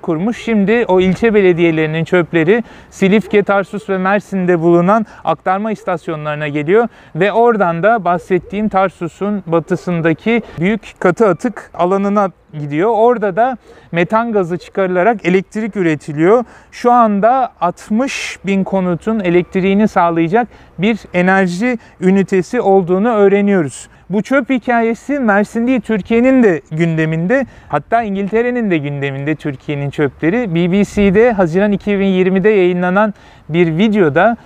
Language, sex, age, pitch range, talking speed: Turkish, male, 40-59, 170-220 Hz, 110 wpm